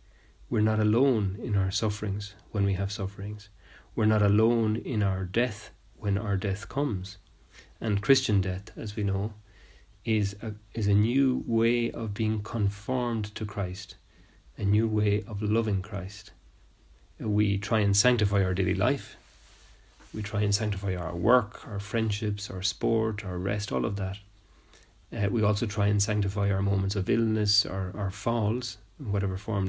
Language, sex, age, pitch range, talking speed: English, male, 30-49, 95-110 Hz, 160 wpm